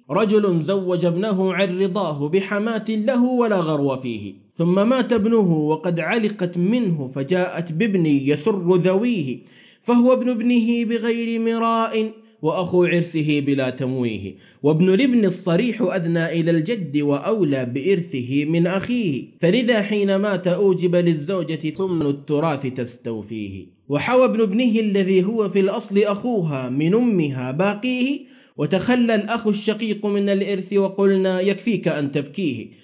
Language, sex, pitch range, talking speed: Arabic, male, 150-215 Hz, 120 wpm